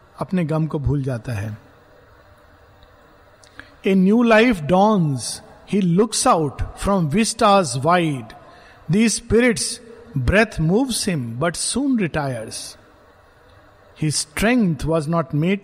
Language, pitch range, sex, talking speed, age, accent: Hindi, 140-210 Hz, male, 105 wpm, 50-69, native